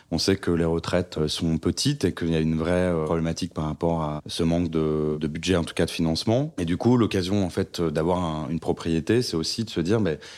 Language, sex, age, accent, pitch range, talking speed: French, male, 30-49, French, 85-100 Hz, 255 wpm